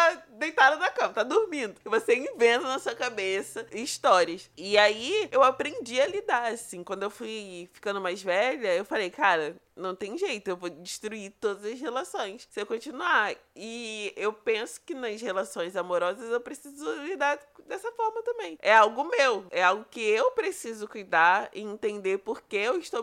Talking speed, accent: 175 wpm, Brazilian